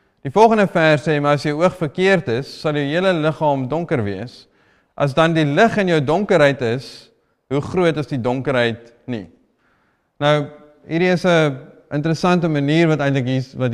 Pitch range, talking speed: 145-185 Hz, 170 wpm